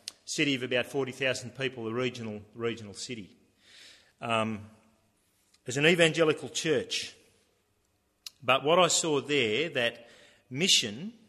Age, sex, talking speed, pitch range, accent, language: 40-59, male, 115 wpm, 105-130 Hz, Australian, English